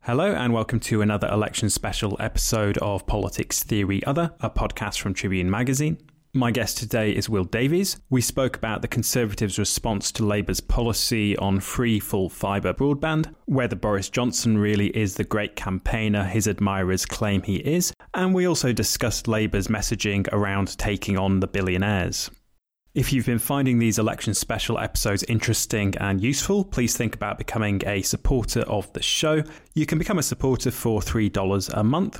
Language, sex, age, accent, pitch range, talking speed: English, male, 20-39, British, 105-130 Hz, 165 wpm